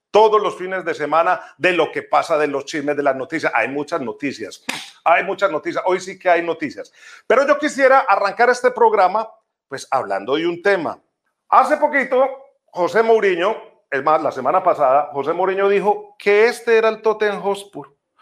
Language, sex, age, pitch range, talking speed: Spanish, male, 40-59, 185-260 Hz, 180 wpm